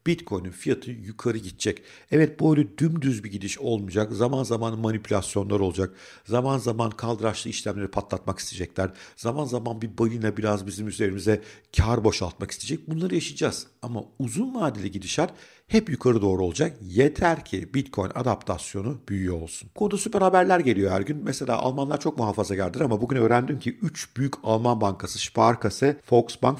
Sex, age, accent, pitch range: male, 50-69, native, 100-140 Hz